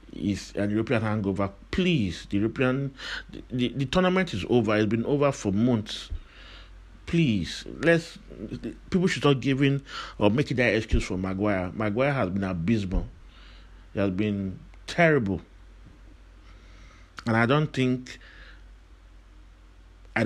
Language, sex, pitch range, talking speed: English, male, 95-130 Hz, 130 wpm